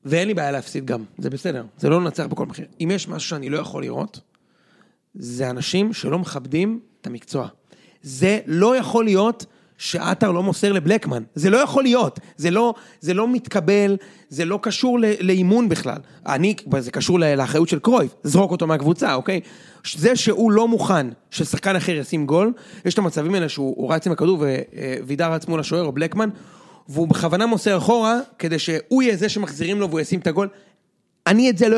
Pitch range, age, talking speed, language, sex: 160-210 Hz, 30-49, 180 wpm, Hebrew, male